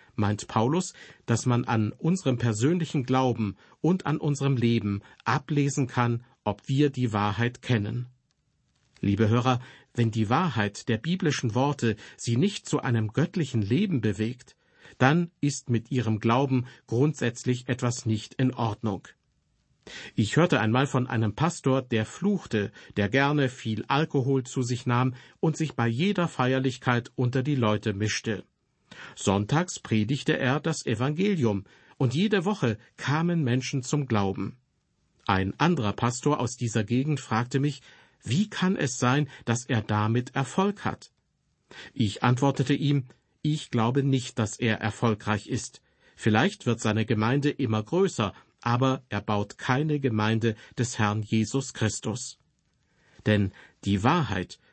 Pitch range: 110-145 Hz